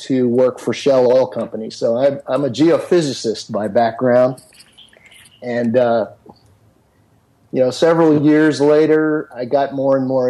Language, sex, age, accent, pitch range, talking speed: English, male, 40-59, American, 120-140 Hz, 145 wpm